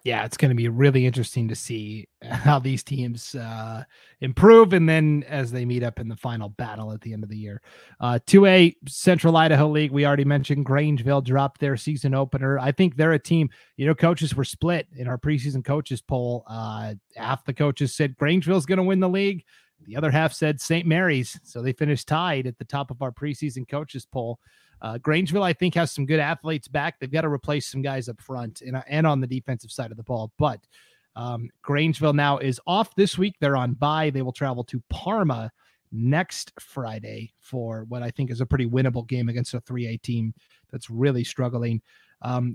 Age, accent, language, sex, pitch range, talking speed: 30-49, American, English, male, 120-145 Hz, 210 wpm